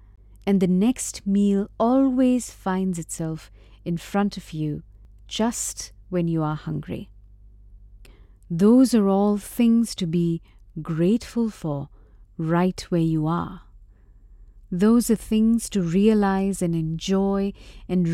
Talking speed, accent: 120 wpm, Indian